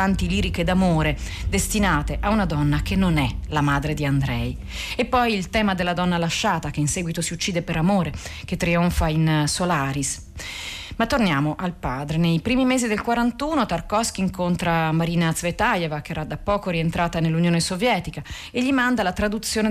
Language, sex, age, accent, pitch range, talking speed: Italian, female, 40-59, native, 155-210 Hz, 175 wpm